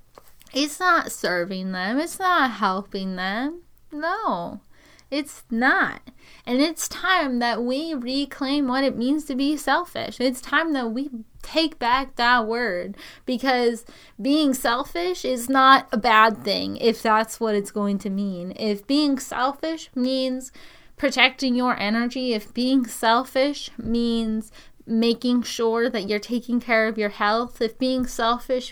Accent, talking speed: American, 145 wpm